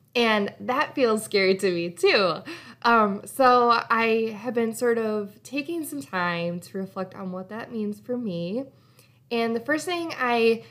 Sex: female